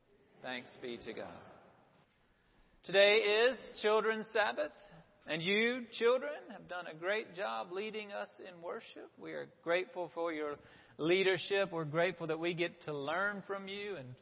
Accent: American